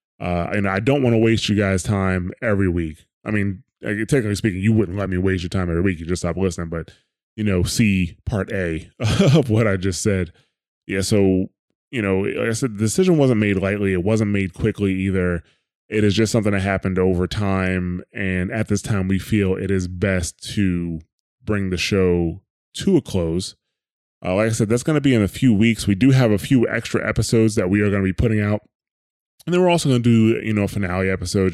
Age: 20-39